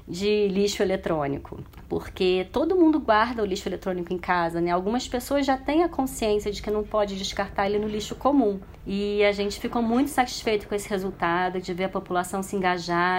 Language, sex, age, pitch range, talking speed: Portuguese, female, 40-59, 190-250 Hz, 195 wpm